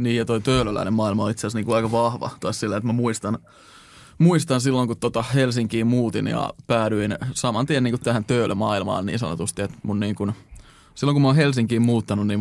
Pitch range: 105-120 Hz